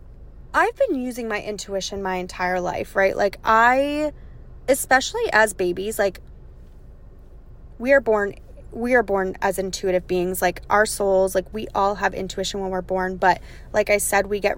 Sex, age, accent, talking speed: female, 20-39, American, 170 wpm